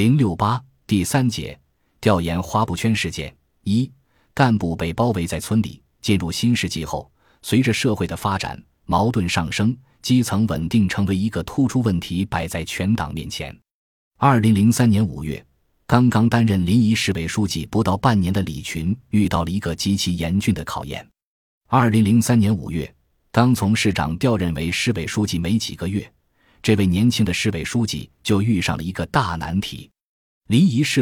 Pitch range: 85-115 Hz